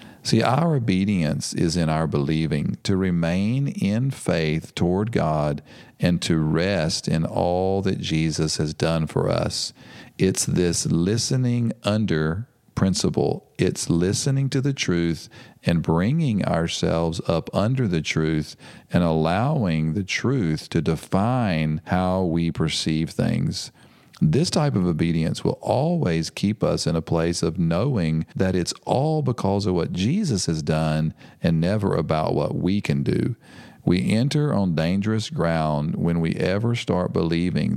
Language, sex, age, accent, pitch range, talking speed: English, male, 40-59, American, 80-105 Hz, 145 wpm